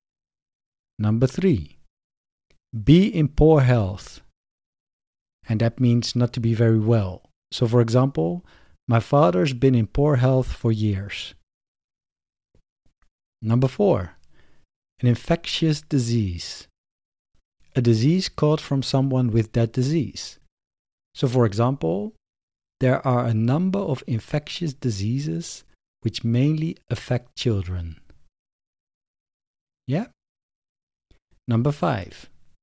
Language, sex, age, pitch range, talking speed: English, male, 50-69, 100-135 Hz, 100 wpm